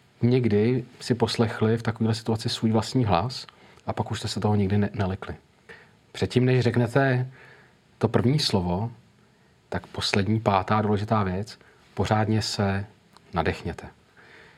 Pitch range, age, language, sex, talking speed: 105-120 Hz, 40-59, Czech, male, 130 wpm